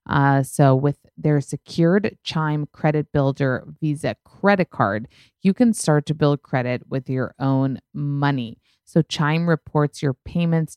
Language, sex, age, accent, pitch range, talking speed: English, female, 20-39, American, 130-165 Hz, 145 wpm